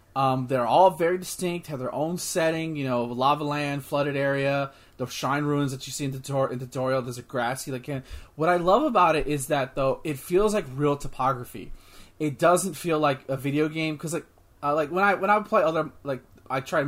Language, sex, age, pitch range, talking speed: English, male, 20-39, 130-160 Hz, 220 wpm